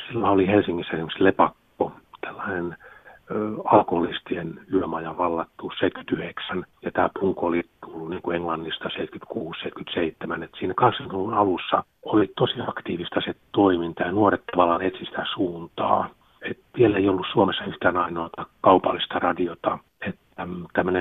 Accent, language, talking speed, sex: native, Finnish, 125 wpm, male